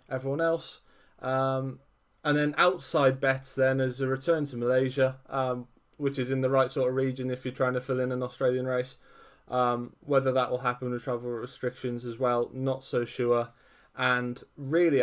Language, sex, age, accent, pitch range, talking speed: English, male, 20-39, British, 120-130 Hz, 185 wpm